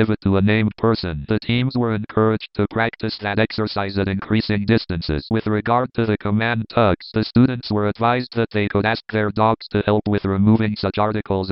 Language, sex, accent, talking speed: English, male, American, 200 wpm